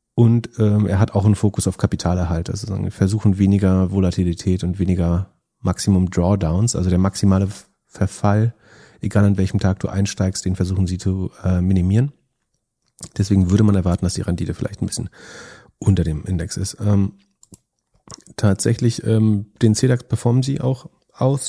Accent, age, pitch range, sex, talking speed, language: German, 40-59, 90-110 Hz, male, 155 wpm, German